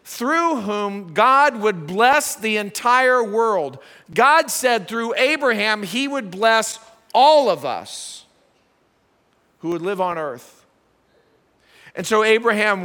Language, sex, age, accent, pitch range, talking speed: English, male, 50-69, American, 195-230 Hz, 120 wpm